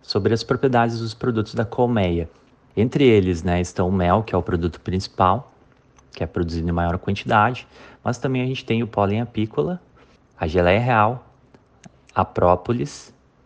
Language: Portuguese